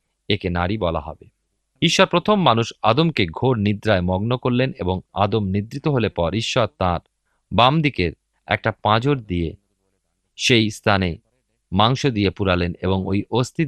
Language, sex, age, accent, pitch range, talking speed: Bengali, male, 40-59, native, 95-130 Hz, 140 wpm